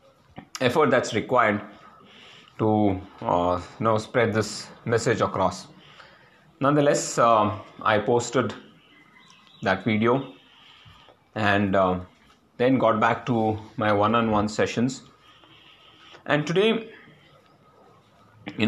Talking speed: 95 wpm